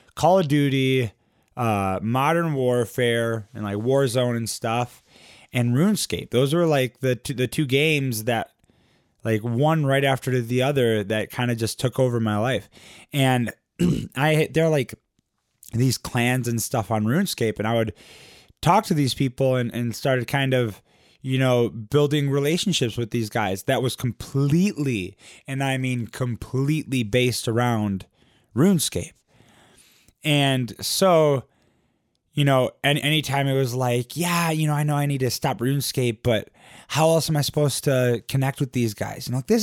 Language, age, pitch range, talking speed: English, 20-39, 115-140 Hz, 165 wpm